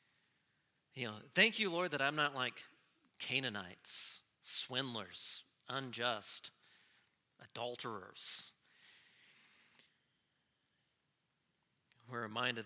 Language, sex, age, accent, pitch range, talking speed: English, male, 40-59, American, 120-185 Hz, 75 wpm